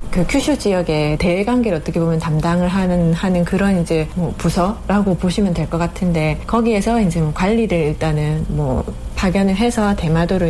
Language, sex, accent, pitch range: Korean, female, native, 160-200 Hz